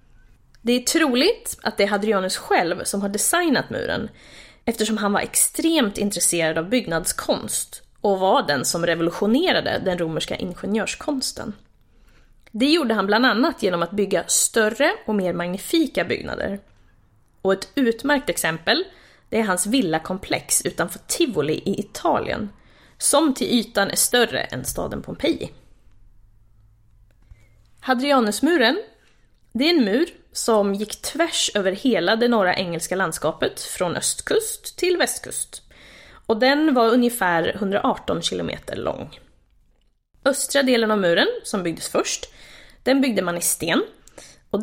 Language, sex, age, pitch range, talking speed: Swedish, female, 30-49, 175-270 Hz, 130 wpm